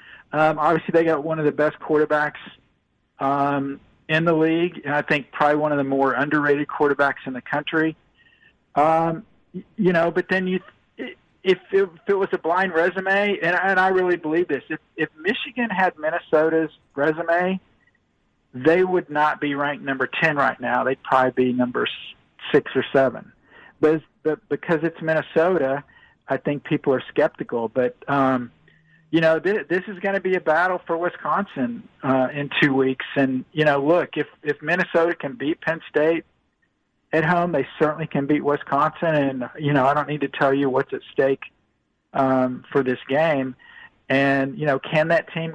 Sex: male